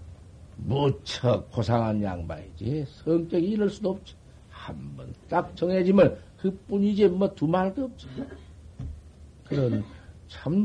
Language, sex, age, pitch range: Korean, male, 60-79, 95-150 Hz